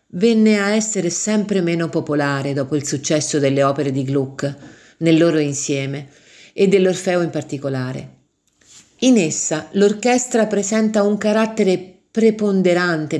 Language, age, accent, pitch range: Italian, 50-69, native, 145-190 Hz